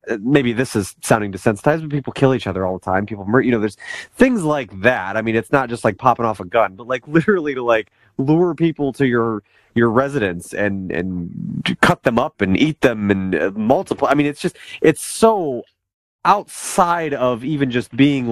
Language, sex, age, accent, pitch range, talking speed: English, male, 30-49, American, 110-145 Hz, 205 wpm